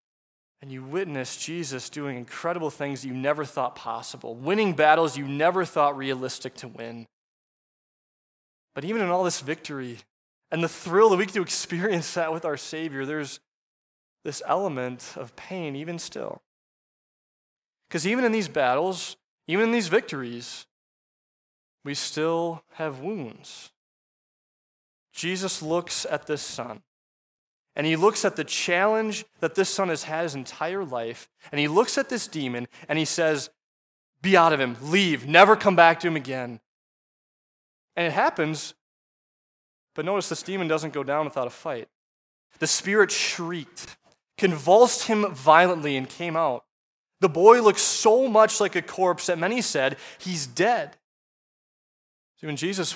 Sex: male